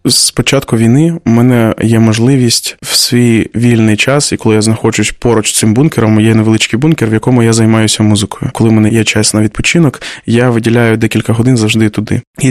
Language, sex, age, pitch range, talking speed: Ukrainian, male, 20-39, 110-125 Hz, 195 wpm